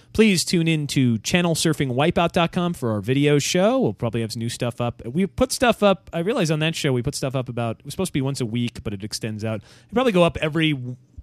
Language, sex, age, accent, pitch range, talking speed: English, male, 30-49, American, 105-155 Hz, 245 wpm